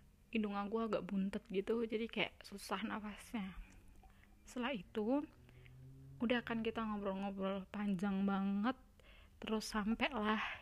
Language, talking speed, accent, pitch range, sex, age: Indonesian, 105 wpm, native, 190-225 Hz, female, 20-39